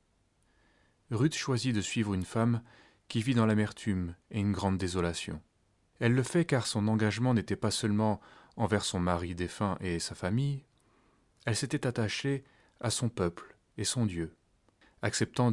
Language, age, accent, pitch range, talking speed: French, 30-49, French, 95-115 Hz, 155 wpm